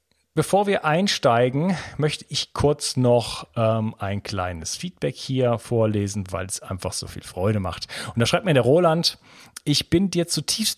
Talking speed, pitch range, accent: 165 wpm, 115-155 Hz, German